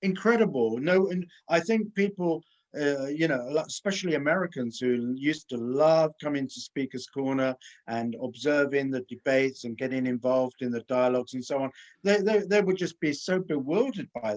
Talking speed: 170 wpm